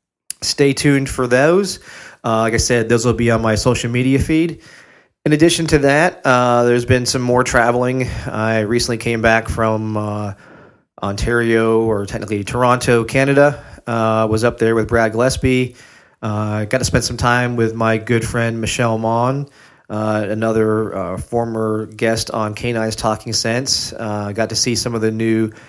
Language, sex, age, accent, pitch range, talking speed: English, male, 30-49, American, 110-125 Hz, 180 wpm